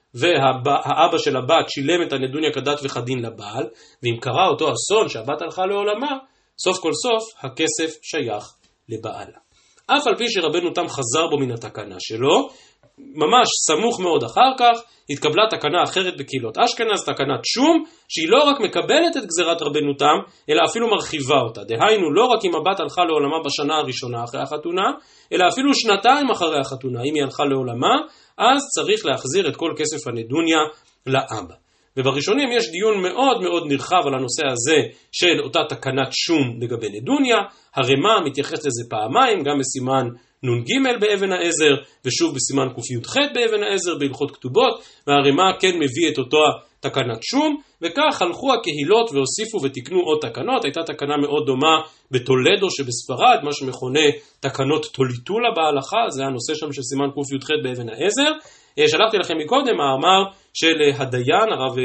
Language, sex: Hebrew, male